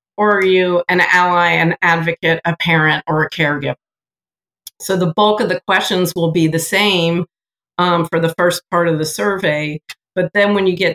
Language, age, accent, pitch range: English, 50-69, American, 155-175 Hz